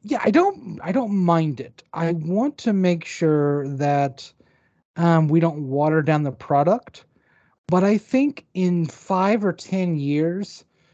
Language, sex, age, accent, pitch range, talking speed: English, male, 30-49, American, 150-180 Hz, 155 wpm